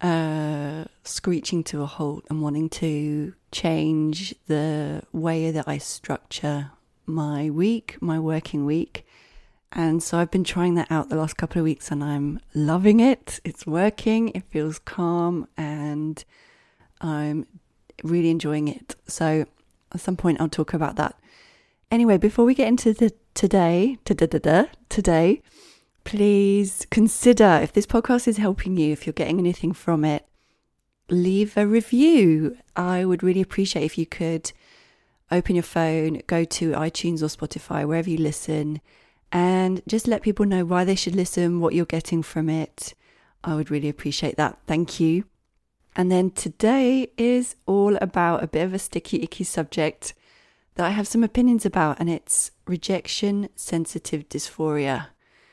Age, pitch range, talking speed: 30-49, 155-195 Hz, 150 wpm